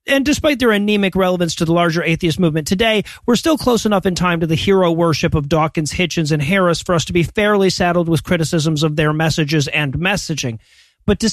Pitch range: 170-220 Hz